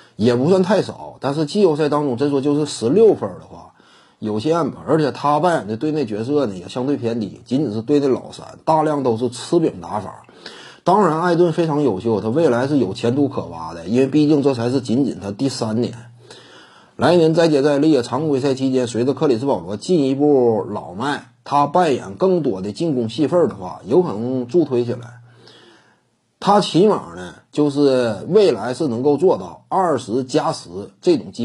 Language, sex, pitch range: Chinese, male, 120-160 Hz